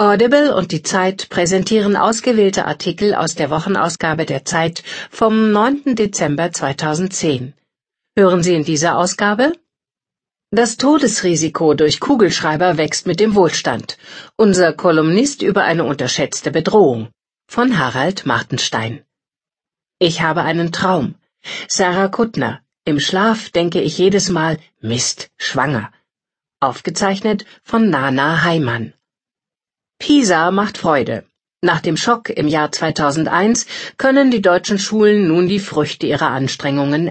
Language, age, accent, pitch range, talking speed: German, 50-69, German, 155-210 Hz, 120 wpm